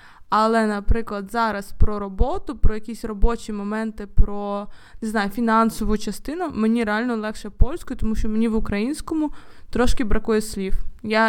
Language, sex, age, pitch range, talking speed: Ukrainian, female, 20-39, 210-240 Hz, 145 wpm